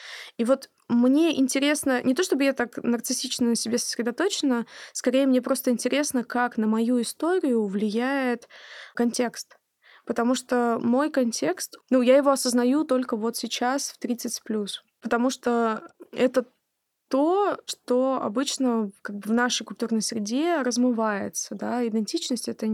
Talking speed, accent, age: 140 wpm, native, 20-39